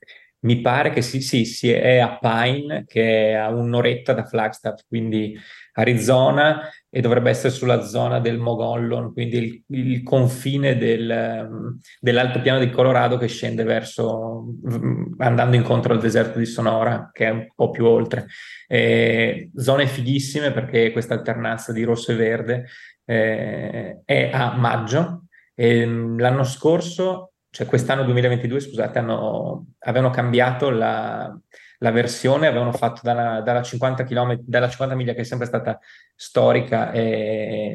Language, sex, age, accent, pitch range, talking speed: Italian, male, 20-39, native, 115-125 Hz, 145 wpm